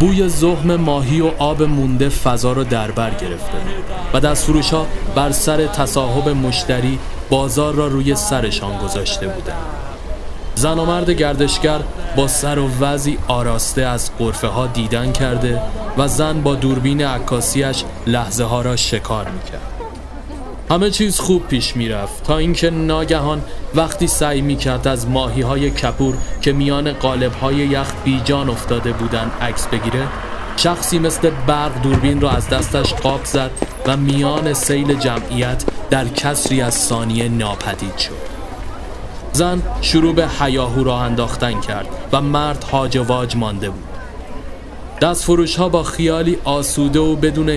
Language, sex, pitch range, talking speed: Persian, male, 120-150 Hz, 140 wpm